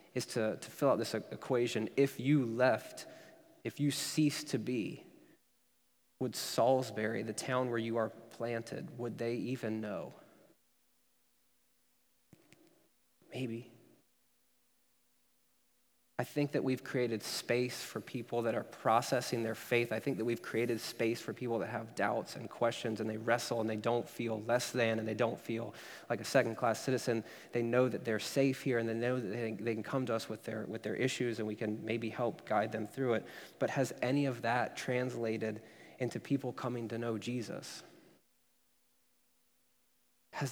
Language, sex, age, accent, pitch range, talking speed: English, male, 30-49, American, 115-125 Hz, 170 wpm